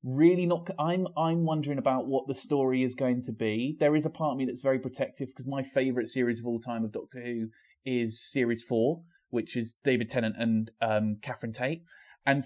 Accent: British